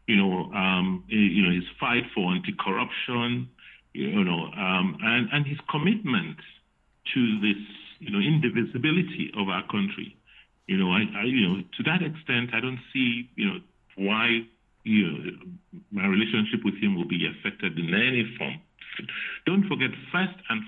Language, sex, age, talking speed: English, male, 50-69, 160 wpm